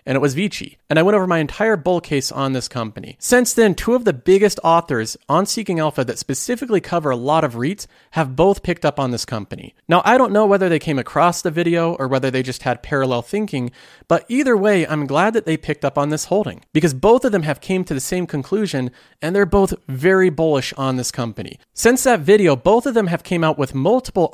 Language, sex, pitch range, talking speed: English, male, 135-195 Hz, 240 wpm